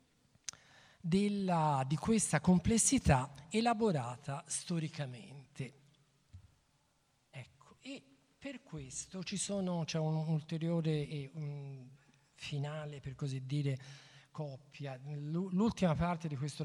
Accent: native